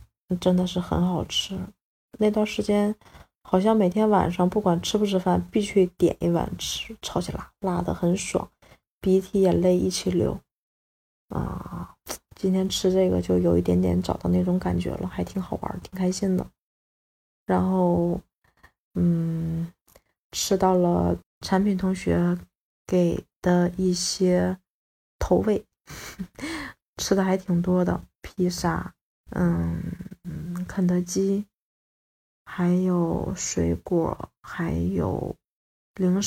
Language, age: Chinese, 20-39